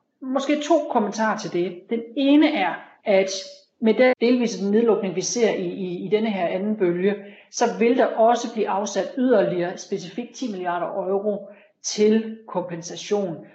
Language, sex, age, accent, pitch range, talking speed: Danish, female, 40-59, native, 190-235 Hz, 155 wpm